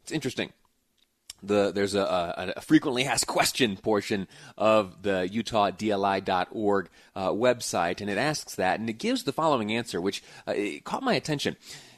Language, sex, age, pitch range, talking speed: English, male, 30-49, 105-140 Hz, 135 wpm